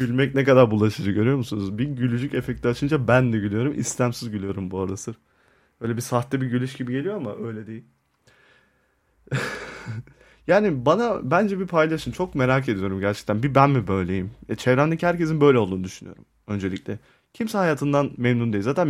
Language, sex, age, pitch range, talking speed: Turkish, male, 30-49, 110-140 Hz, 170 wpm